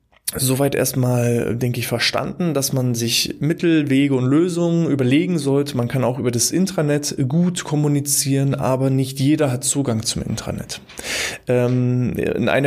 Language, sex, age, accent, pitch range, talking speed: German, male, 20-39, German, 125-150 Hz, 140 wpm